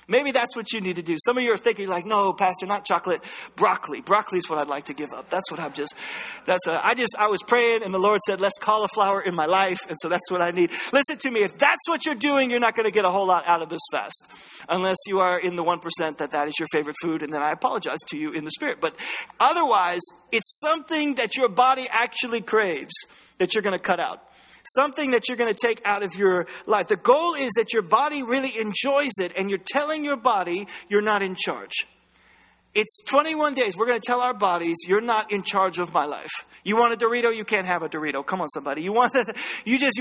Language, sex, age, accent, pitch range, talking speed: English, male, 40-59, American, 185-250 Hz, 245 wpm